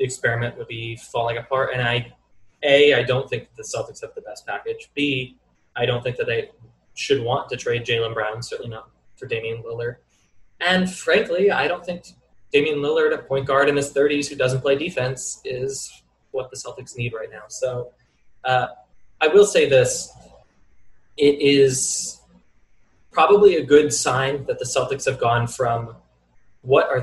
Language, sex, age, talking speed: English, male, 20-39, 175 wpm